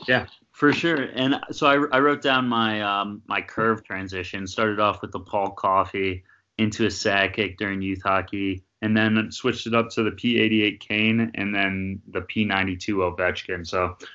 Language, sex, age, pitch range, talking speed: English, male, 20-39, 90-110 Hz, 180 wpm